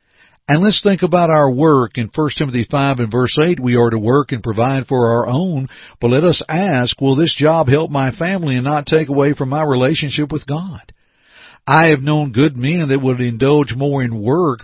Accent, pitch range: American, 115-145 Hz